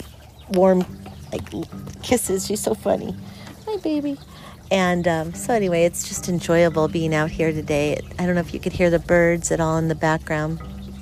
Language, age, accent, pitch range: English, 40-59, American, 155-180 Hz